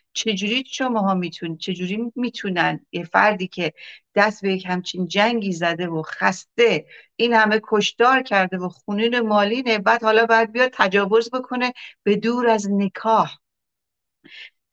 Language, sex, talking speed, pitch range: Persian, female, 140 wpm, 185-225 Hz